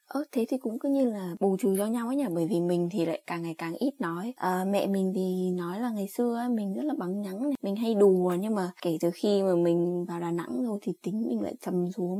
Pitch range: 185-235 Hz